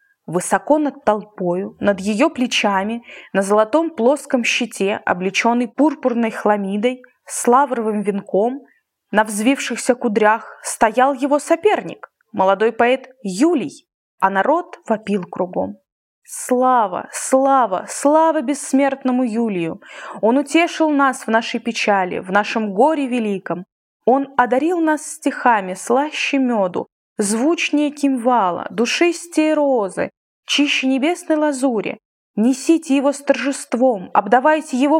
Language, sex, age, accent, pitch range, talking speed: Russian, female, 20-39, native, 215-285 Hz, 105 wpm